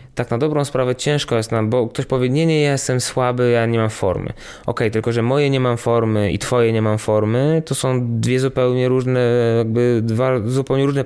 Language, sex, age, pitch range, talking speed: Polish, male, 20-39, 115-130 Hz, 220 wpm